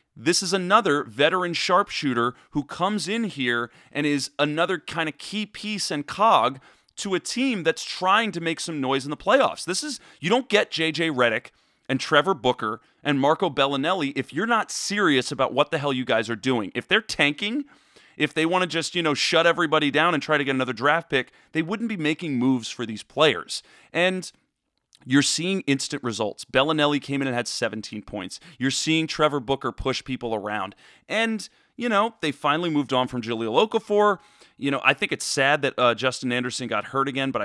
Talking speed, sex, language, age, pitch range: 200 wpm, male, English, 30-49, 130-170 Hz